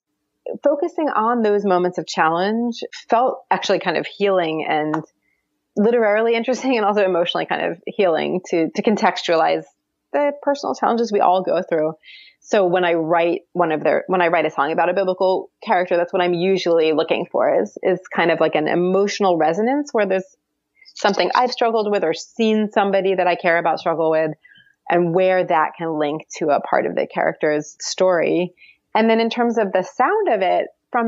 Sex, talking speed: female, 185 wpm